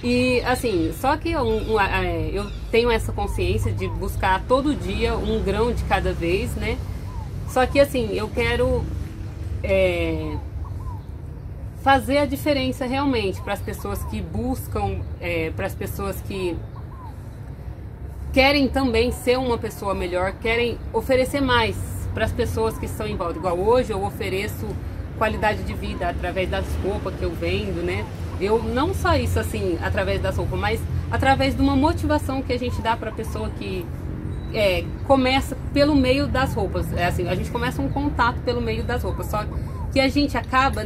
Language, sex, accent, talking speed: Portuguese, female, Brazilian, 160 wpm